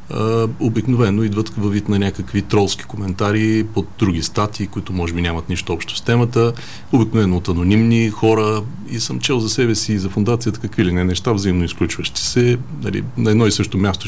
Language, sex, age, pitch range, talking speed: Bulgarian, male, 40-59, 95-115 Hz, 190 wpm